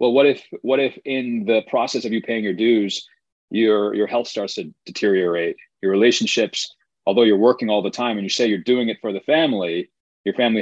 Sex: male